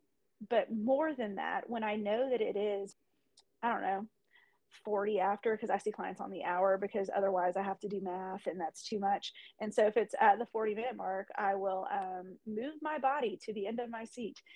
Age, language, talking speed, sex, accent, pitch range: 30-49, English, 225 wpm, female, American, 200-275 Hz